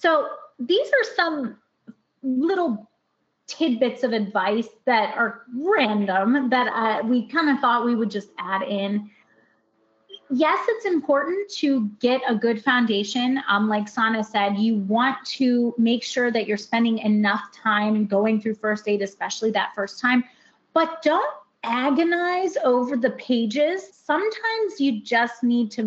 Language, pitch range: English, 215-280 Hz